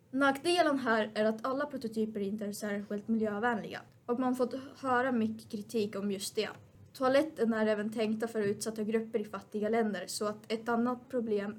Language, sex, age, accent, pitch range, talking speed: Swedish, female, 20-39, native, 210-245 Hz, 180 wpm